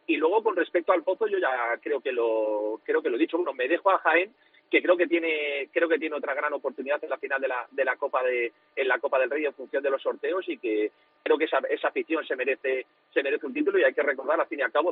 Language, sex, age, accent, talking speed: Spanish, male, 40-59, Spanish, 280 wpm